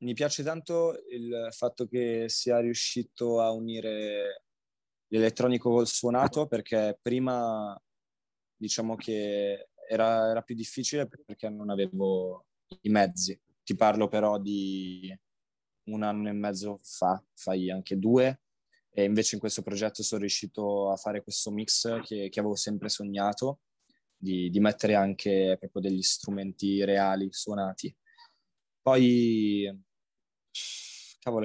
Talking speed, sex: 125 wpm, male